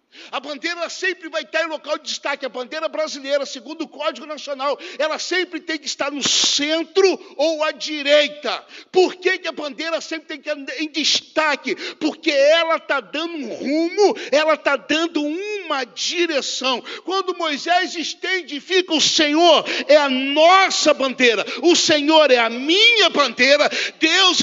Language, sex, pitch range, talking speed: Portuguese, male, 295-345 Hz, 160 wpm